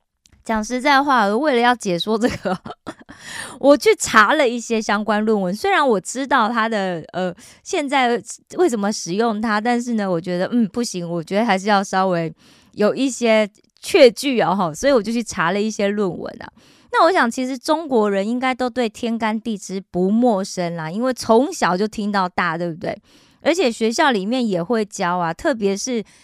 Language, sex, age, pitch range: Korean, female, 20-39, 190-245 Hz